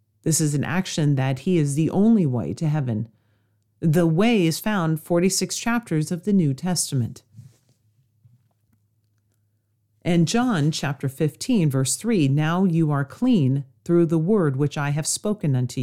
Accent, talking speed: American, 150 wpm